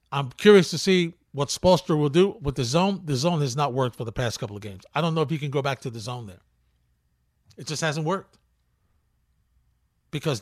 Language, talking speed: English, 225 wpm